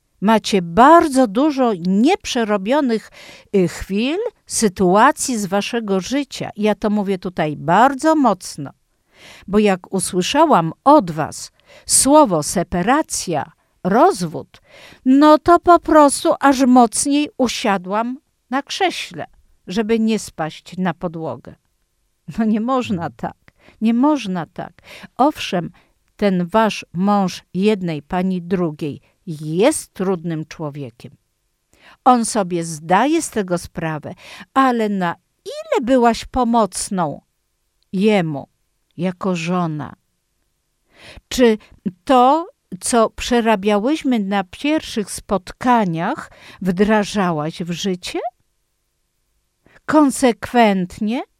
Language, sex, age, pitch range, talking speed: Polish, female, 50-69, 180-255 Hz, 90 wpm